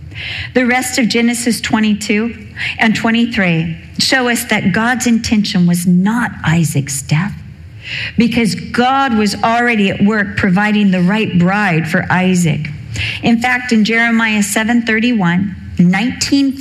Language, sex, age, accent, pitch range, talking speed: English, female, 40-59, American, 150-210 Hz, 120 wpm